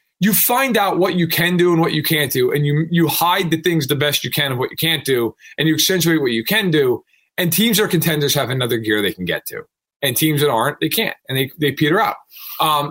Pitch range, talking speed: 140-185 Hz, 270 wpm